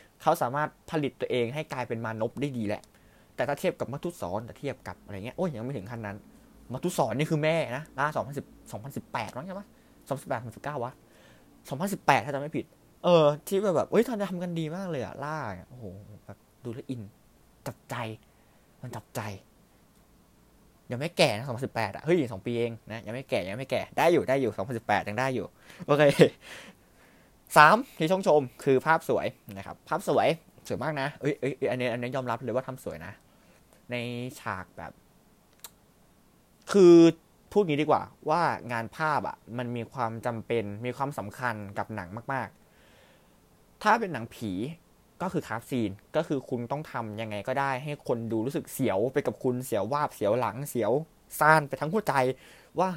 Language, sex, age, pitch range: Thai, male, 20-39, 115-155 Hz